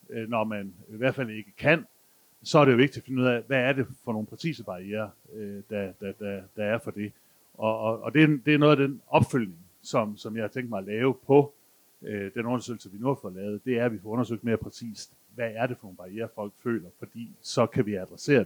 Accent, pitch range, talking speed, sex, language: native, 105-130 Hz, 255 wpm, male, Danish